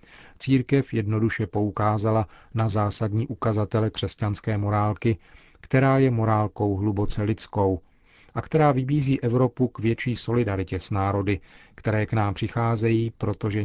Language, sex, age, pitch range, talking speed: Czech, male, 40-59, 100-115 Hz, 120 wpm